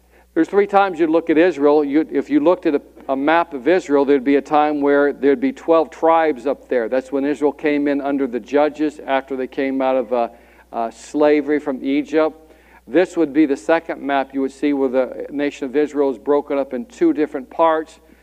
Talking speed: 215 wpm